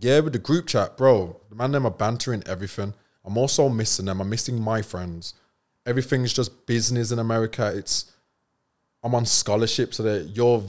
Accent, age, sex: British, 20-39, male